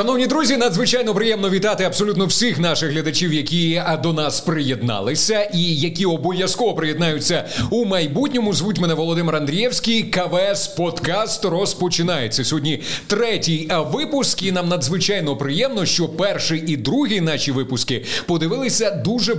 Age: 30-49